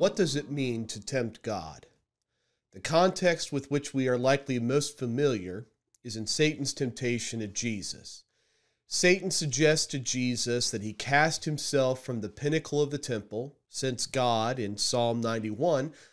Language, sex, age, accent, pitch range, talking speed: English, male, 40-59, American, 120-155 Hz, 155 wpm